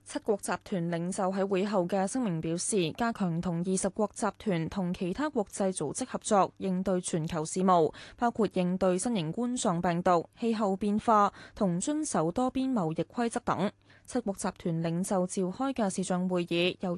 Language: Chinese